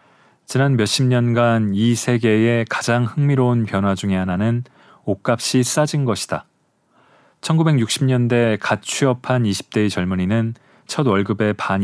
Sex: male